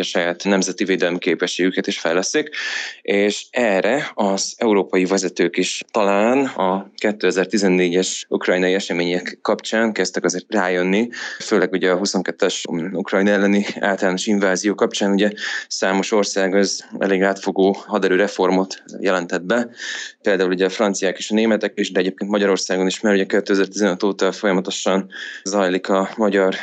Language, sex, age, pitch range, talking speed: Hungarian, male, 20-39, 95-110 Hz, 135 wpm